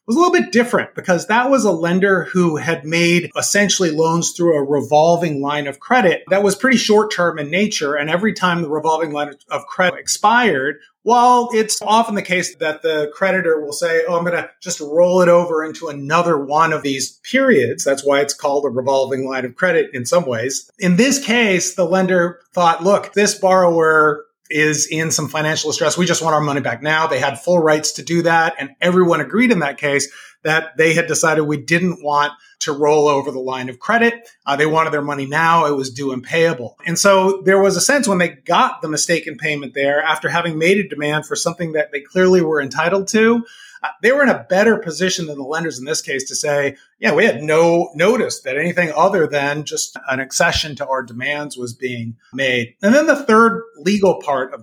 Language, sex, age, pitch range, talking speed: English, male, 30-49, 150-195 Hz, 215 wpm